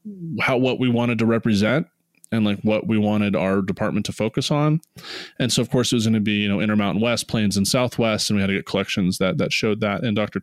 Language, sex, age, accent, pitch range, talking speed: English, male, 20-39, American, 100-125 Hz, 255 wpm